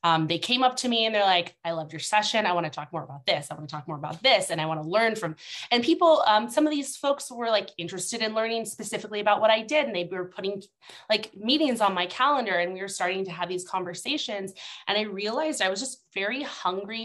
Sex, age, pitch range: female, 20-39, 175-230 Hz